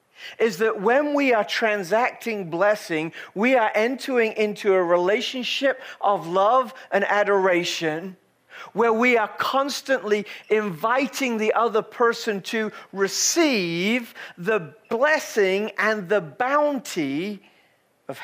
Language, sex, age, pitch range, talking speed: English, male, 40-59, 190-235 Hz, 110 wpm